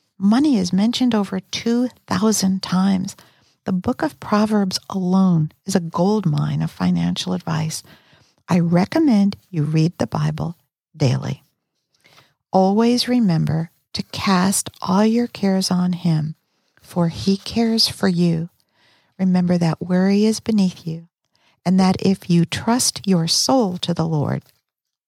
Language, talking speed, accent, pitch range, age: English, 130 wpm, American, 160-200 Hz, 50-69